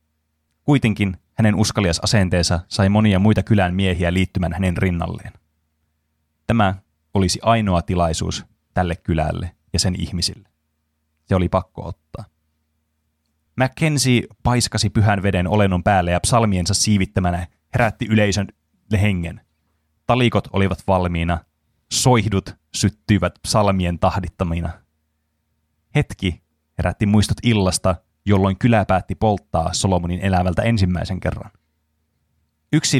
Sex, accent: male, native